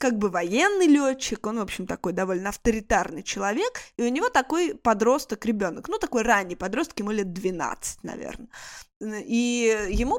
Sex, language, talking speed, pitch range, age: female, Russian, 160 wpm, 210-275 Hz, 20-39